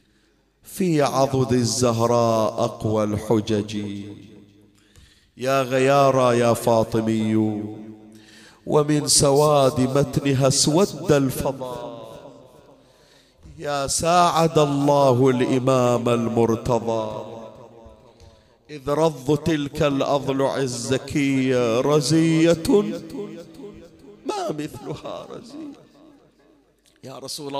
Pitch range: 120-155 Hz